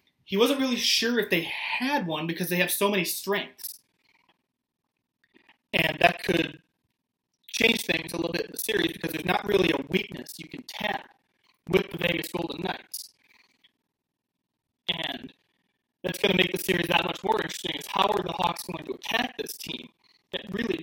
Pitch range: 170-205 Hz